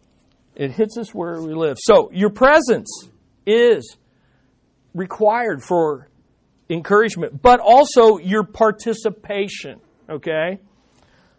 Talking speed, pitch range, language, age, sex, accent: 95 wpm, 150-205 Hz, English, 40-59, male, American